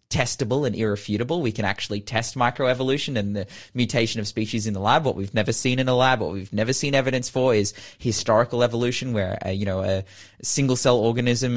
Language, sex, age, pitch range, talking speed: English, male, 20-39, 105-140 Hz, 205 wpm